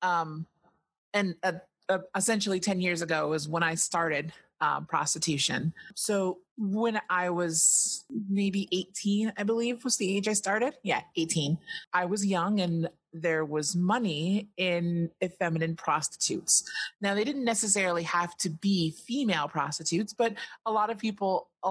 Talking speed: 150 wpm